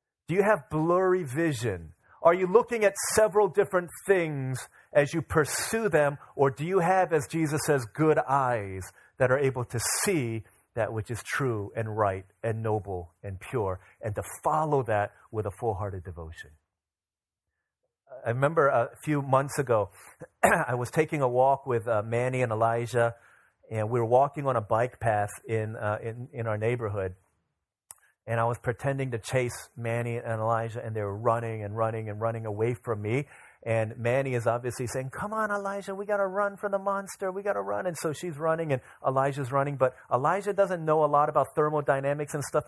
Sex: male